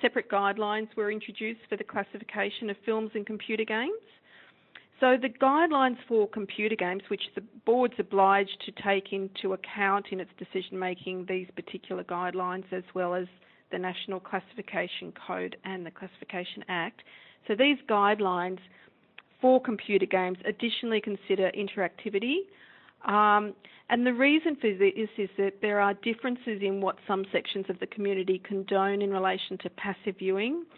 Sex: female